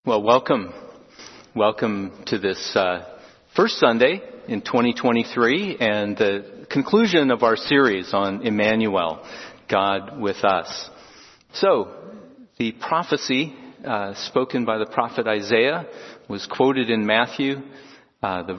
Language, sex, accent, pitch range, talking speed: English, male, American, 100-135 Hz, 115 wpm